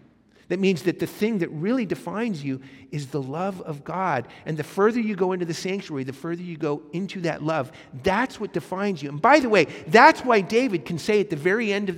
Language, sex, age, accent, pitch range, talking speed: English, male, 50-69, American, 140-205 Hz, 235 wpm